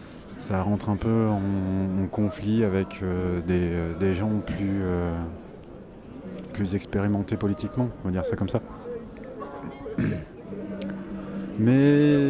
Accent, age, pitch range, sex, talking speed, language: French, 30-49, 95-110 Hz, male, 120 wpm, French